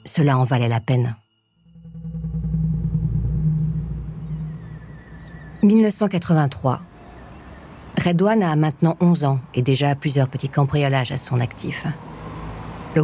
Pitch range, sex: 120-160 Hz, female